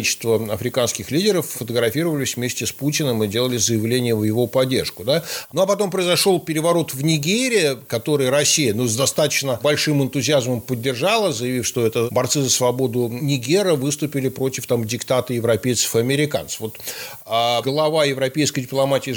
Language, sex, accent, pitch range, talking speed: Russian, male, native, 125-160 Hz, 145 wpm